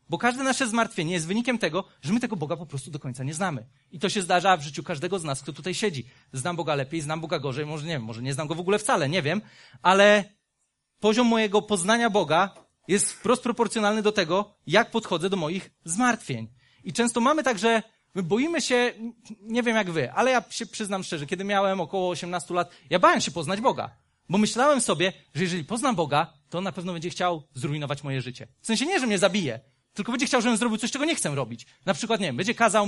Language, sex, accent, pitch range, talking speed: Polish, male, native, 165-240 Hz, 230 wpm